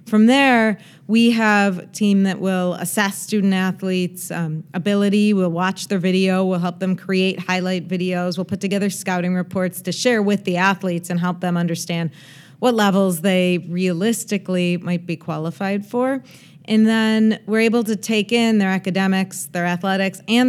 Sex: female